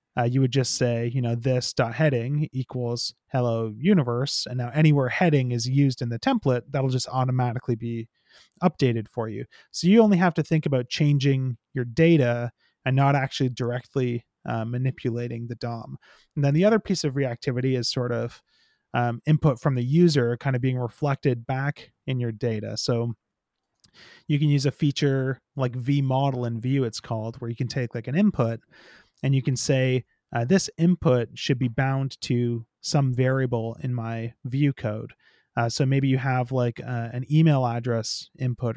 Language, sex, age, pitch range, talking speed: English, male, 30-49, 120-140 Hz, 180 wpm